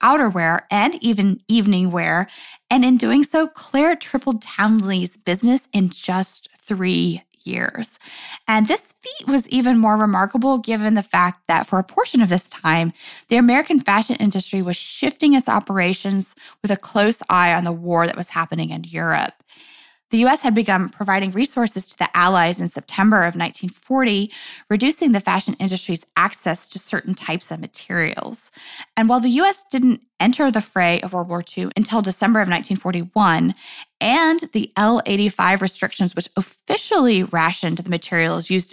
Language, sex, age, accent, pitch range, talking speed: English, female, 20-39, American, 180-245 Hz, 160 wpm